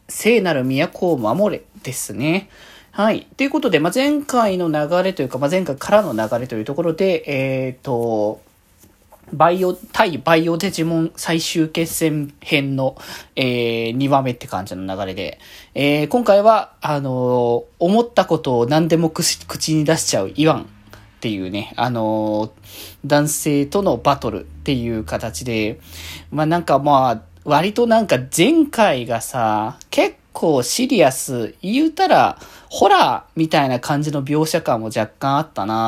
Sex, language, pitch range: male, Japanese, 115-185 Hz